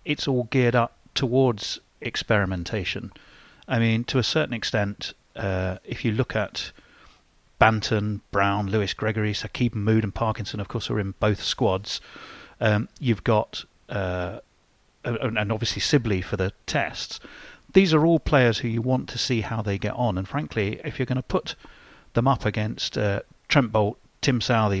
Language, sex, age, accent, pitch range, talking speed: English, male, 40-59, British, 105-135 Hz, 165 wpm